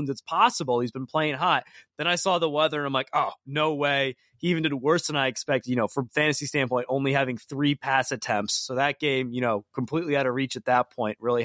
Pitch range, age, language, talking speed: 135-170 Hz, 20-39, English, 245 wpm